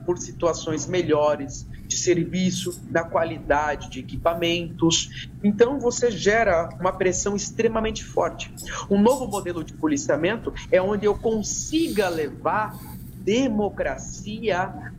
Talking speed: 110 wpm